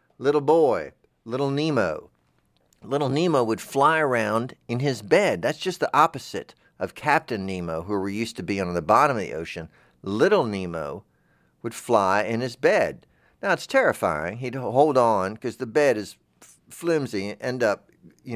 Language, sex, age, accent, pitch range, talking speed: English, male, 50-69, American, 85-130 Hz, 165 wpm